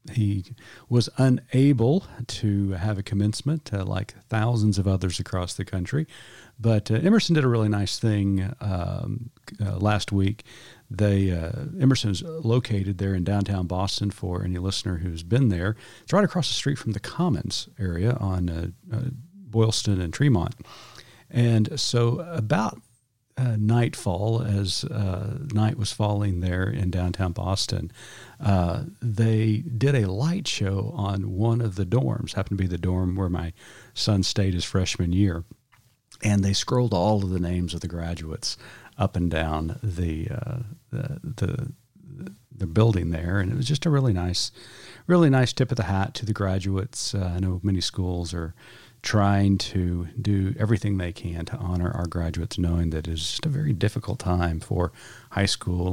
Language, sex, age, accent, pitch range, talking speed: English, male, 50-69, American, 95-125 Hz, 165 wpm